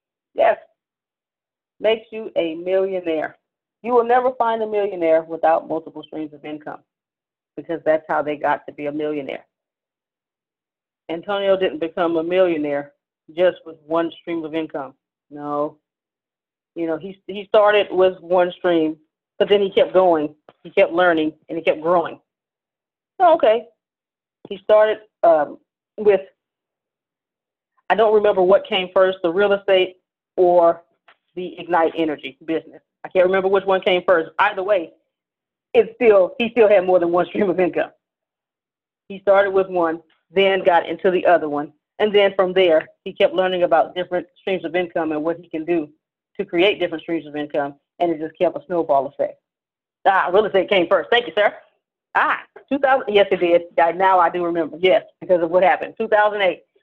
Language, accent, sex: English, American, female